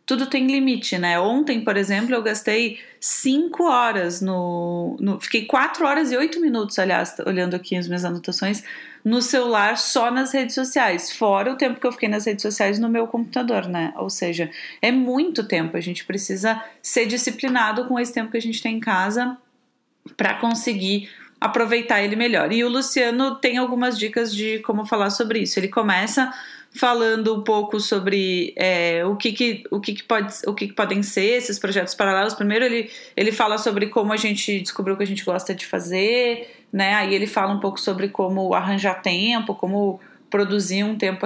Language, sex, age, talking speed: Portuguese, female, 30-49, 190 wpm